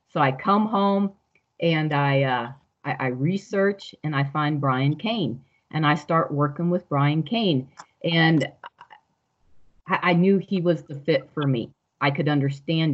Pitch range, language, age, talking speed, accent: 145-185 Hz, English, 40-59, 160 wpm, American